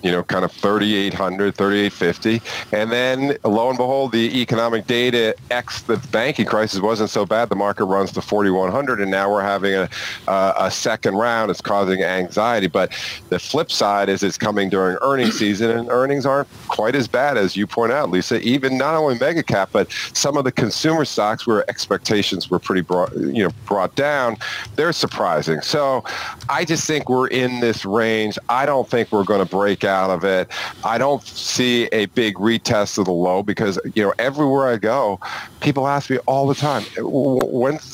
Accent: American